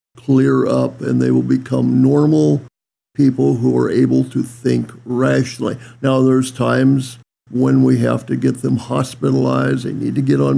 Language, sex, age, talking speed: English, male, 50-69, 165 wpm